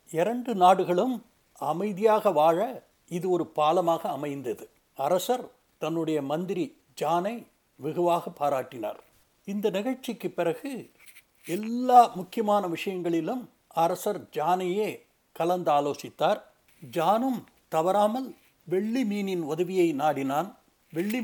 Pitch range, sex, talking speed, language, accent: 165-210 Hz, male, 85 wpm, Tamil, native